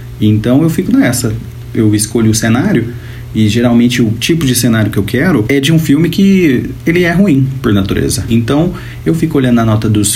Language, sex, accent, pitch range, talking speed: Portuguese, male, Brazilian, 110-145 Hz, 200 wpm